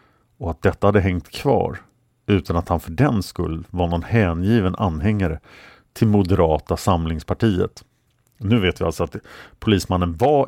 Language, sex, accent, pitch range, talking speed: Swedish, male, Norwegian, 85-120 Hz, 150 wpm